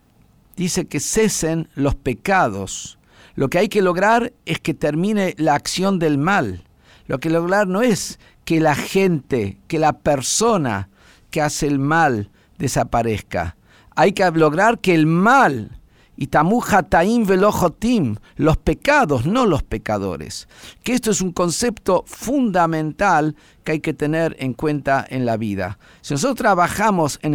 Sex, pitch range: male, 140-185 Hz